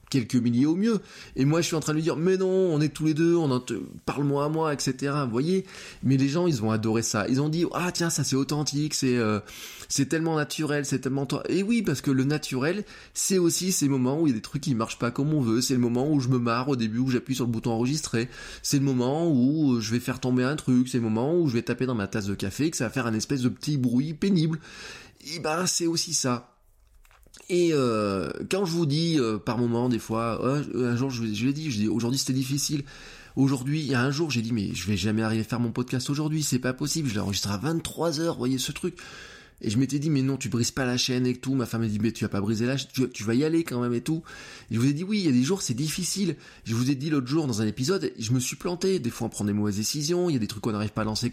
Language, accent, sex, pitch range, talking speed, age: French, French, male, 120-155 Hz, 300 wpm, 20-39